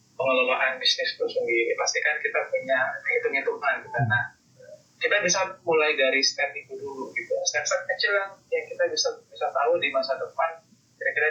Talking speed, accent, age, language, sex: 155 wpm, native, 30-49, Indonesian, male